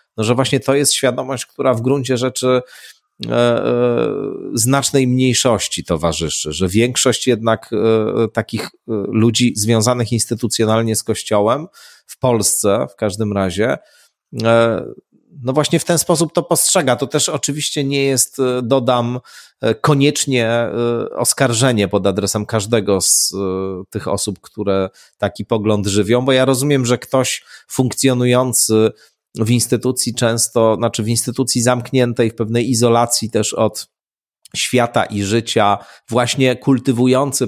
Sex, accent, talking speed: male, native, 130 wpm